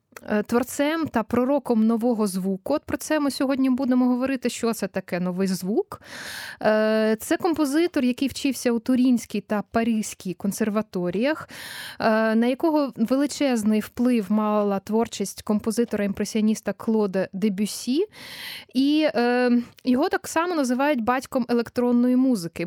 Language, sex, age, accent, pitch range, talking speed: Ukrainian, female, 20-39, native, 210-265 Hz, 115 wpm